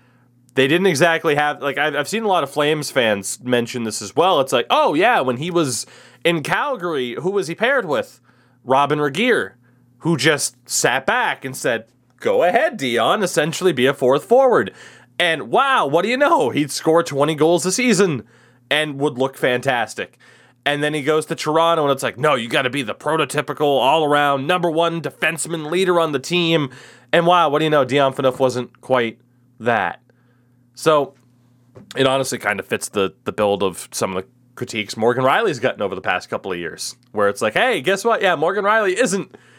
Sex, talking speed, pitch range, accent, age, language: male, 195 wpm, 125-170 Hz, American, 20-39, English